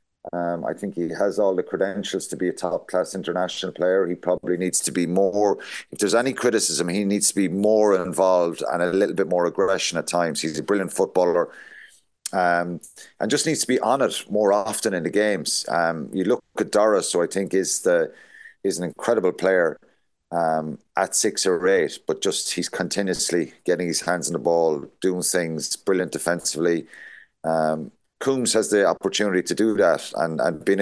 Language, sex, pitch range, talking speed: English, male, 90-115 Hz, 190 wpm